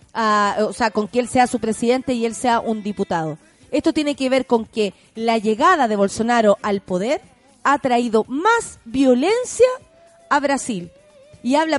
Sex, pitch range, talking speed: female, 225-300 Hz, 175 wpm